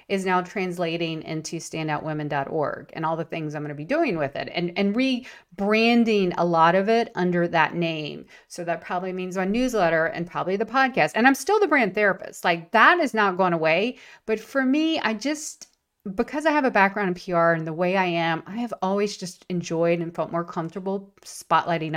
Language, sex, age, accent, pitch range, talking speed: English, female, 40-59, American, 170-215 Hz, 205 wpm